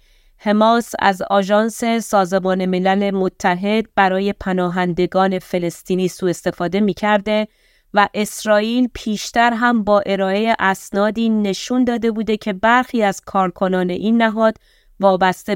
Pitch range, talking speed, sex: 190-225 Hz, 110 wpm, female